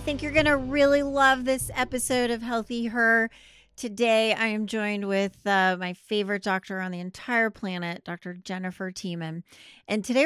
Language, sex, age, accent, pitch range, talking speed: English, female, 30-49, American, 180-230 Hz, 170 wpm